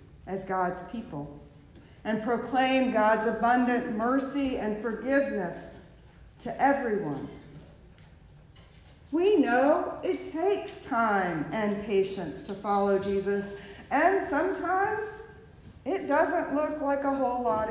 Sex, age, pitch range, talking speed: female, 50-69, 195-255 Hz, 105 wpm